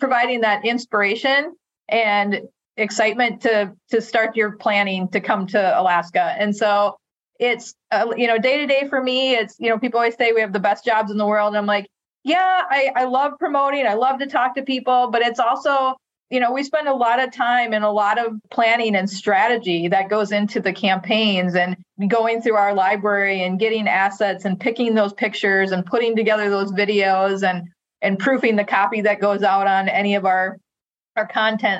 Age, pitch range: 30-49, 200-235 Hz